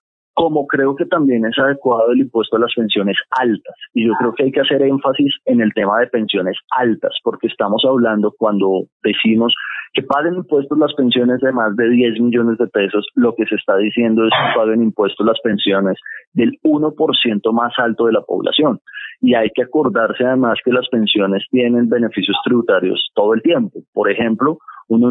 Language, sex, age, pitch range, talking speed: Spanish, male, 30-49, 110-130 Hz, 185 wpm